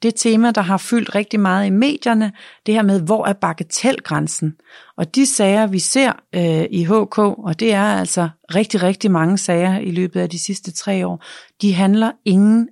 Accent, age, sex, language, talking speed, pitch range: native, 30-49, female, Danish, 195 wpm, 165-210 Hz